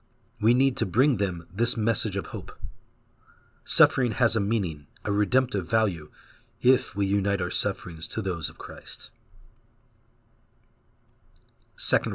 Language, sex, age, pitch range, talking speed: English, male, 40-59, 100-120 Hz, 130 wpm